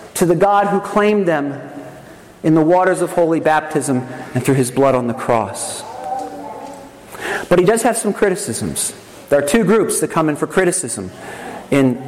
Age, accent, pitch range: 40-59, American, 140-190 Hz